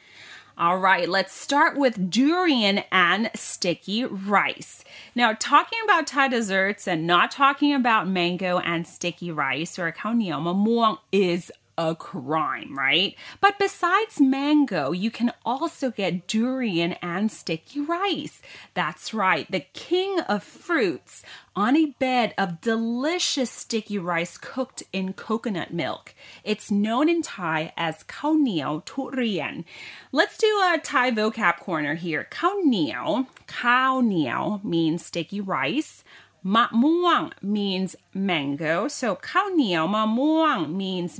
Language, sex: Thai, female